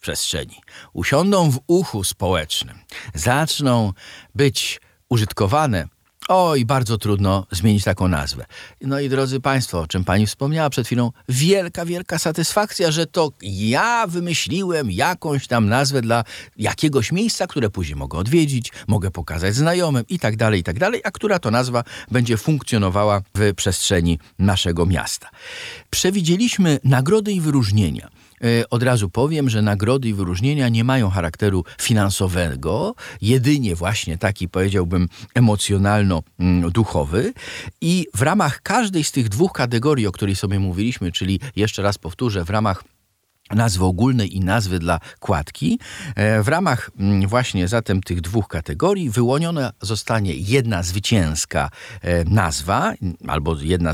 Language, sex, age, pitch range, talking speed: Polish, male, 50-69, 95-140 Hz, 130 wpm